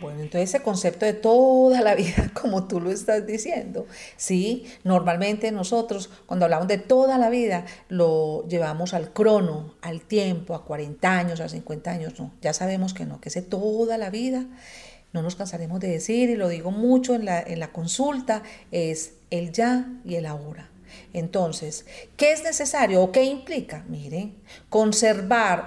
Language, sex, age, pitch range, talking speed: Spanish, female, 40-59, 170-230 Hz, 170 wpm